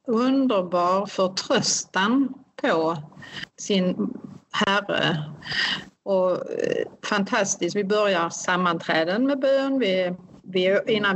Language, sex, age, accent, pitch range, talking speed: Swedish, female, 40-59, native, 185-225 Hz, 85 wpm